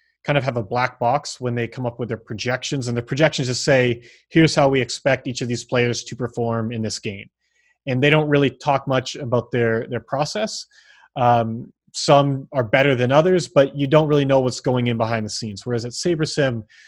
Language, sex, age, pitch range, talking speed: English, male, 30-49, 120-150 Hz, 215 wpm